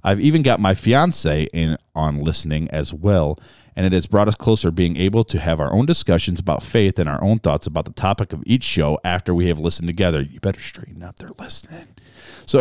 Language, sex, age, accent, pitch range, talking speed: English, male, 40-59, American, 85-130 Hz, 225 wpm